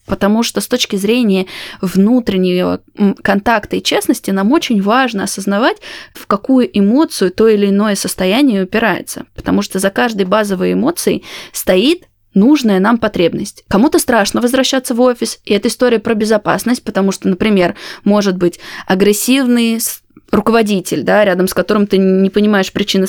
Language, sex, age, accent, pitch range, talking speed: Russian, female, 20-39, native, 195-240 Hz, 145 wpm